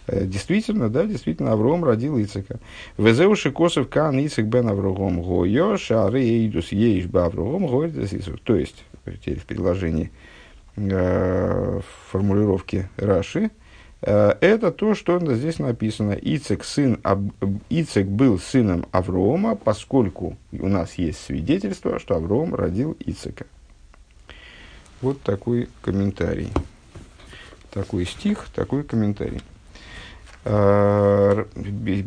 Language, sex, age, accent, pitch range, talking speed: Russian, male, 50-69, native, 95-130 Hz, 100 wpm